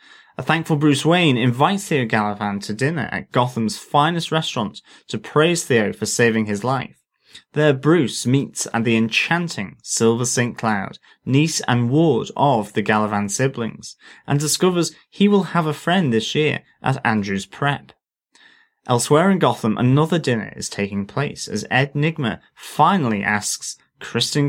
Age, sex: 30-49, male